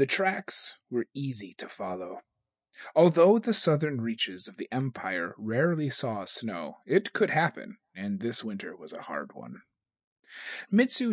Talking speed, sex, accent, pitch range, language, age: 145 wpm, male, American, 130-205 Hz, English, 30-49